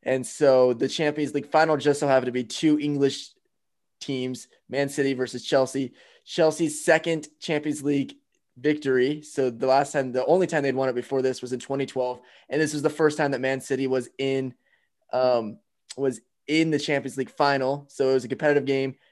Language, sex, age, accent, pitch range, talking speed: English, male, 20-39, American, 130-150 Hz, 195 wpm